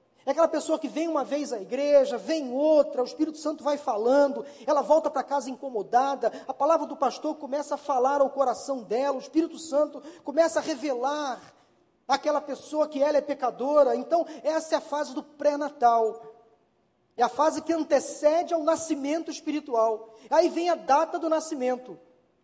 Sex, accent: male, Brazilian